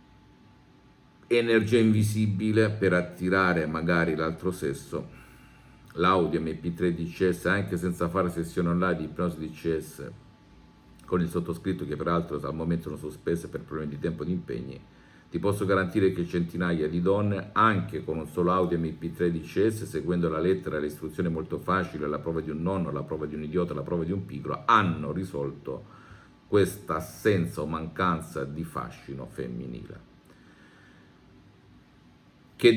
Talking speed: 145 wpm